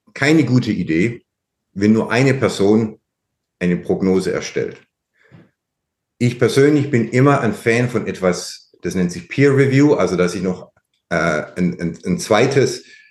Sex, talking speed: male, 145 wpm